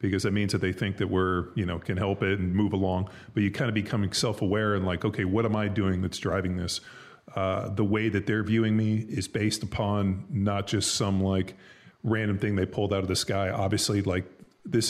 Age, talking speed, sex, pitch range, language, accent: 30-49, 230 wpm, male, 95-110 Hz, English, American